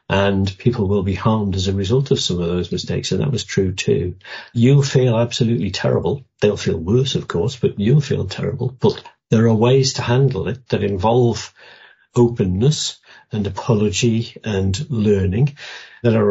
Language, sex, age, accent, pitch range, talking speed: English, male, 50-69, British, 105-130 Hz, 175 wpm